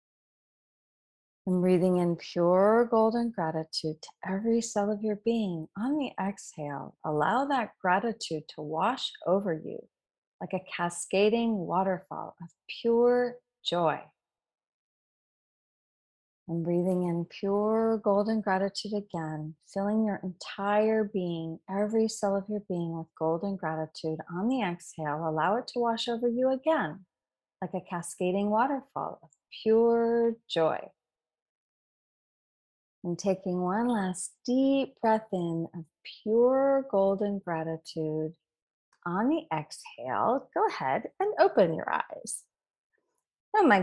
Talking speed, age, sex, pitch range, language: 120 wpm, 30-49, female, 175-245 Hz, English